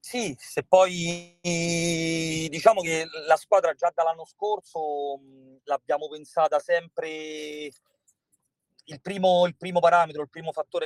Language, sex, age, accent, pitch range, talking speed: Italian, male, 40-59, native, 135-165 Hz, 110 wpm